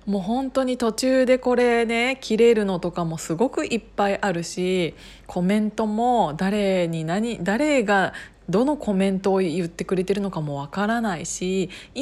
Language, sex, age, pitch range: Japanese, female, 20-39, 185-255 Hz